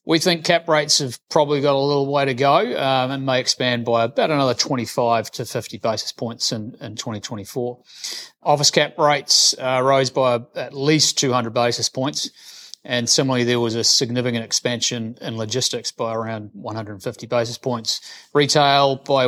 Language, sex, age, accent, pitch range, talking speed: English, male, 30-49, Australian, 120-145 Hz, 170 wpm